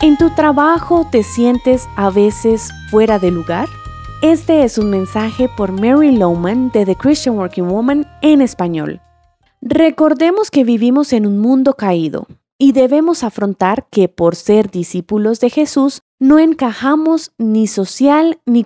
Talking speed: 145 wpm